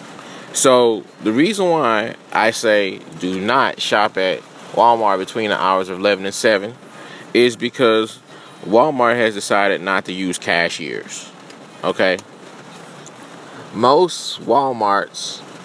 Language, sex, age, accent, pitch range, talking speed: English, male, 20-39, American, 105-120 Hz, 115 wpm